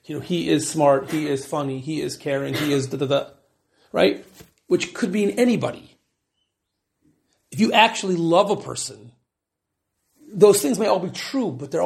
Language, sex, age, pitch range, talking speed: English, male, 40-59, 150-245 Hz, 180 wpm